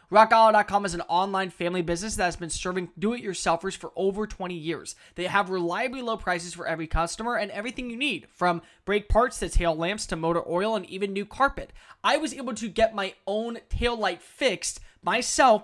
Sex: male